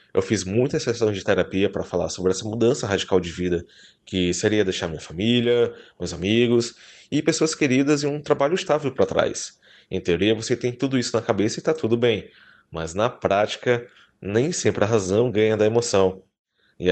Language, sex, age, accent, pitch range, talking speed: Portuguese, male, 20-39, Brazilian, 95-120 Hz, 190 wpm